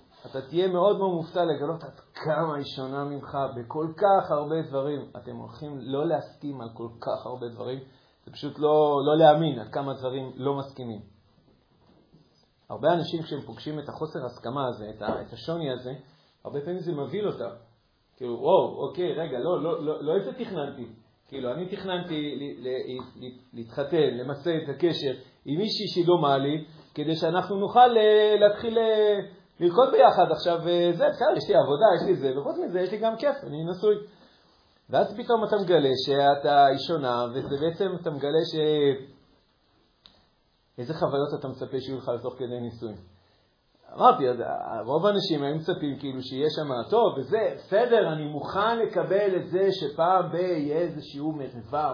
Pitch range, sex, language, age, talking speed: 130-180 Hz, male, Hebrew, 40-59, 120 wpm